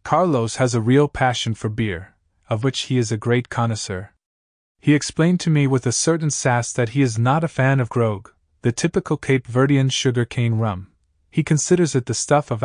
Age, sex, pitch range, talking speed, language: 20-39, male, 110-140 Hz, 205 wpm, Italian